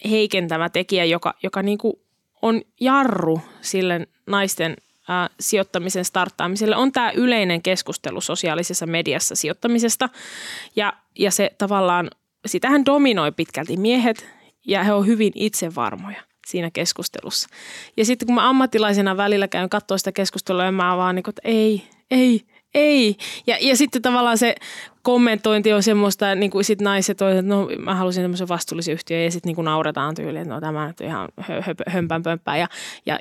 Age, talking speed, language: 20-39, 155 wpm, Finnish